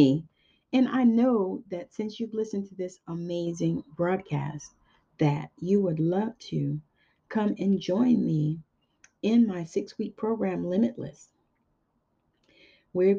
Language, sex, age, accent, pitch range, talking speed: English, female, 40-59, American, 160-220 Hz, 120 wpm